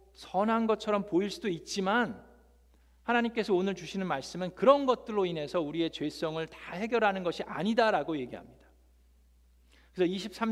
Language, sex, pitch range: Korean, male, 145-215 Hz